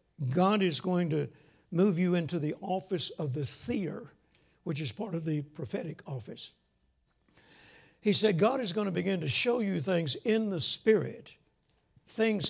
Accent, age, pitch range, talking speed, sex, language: American, 60-79, 140-185 Hz, 165 wpm, male, English